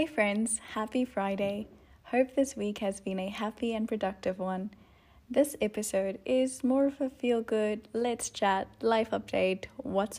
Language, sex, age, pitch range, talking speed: English, female, 10-29, 195-250 Hz, 160 wpm